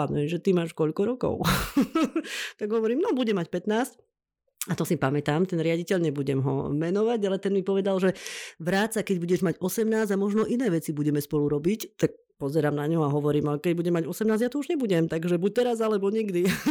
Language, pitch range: Slovak, 145-185 Hz